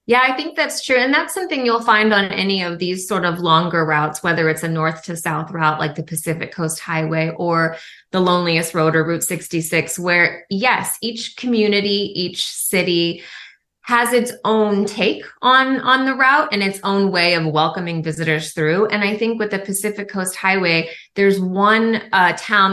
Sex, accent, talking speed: female, American, 185 wpm